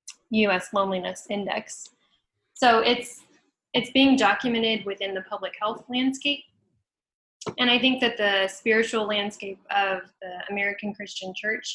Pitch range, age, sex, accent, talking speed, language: 200-245 Hz, 10-29, female, American, 130 wpm, English